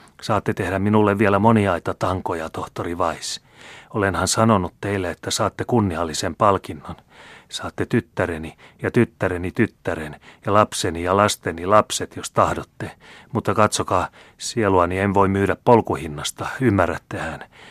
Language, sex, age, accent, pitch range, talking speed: Finnish, male, 30-49, native, 90-115 Hz, 120 wpm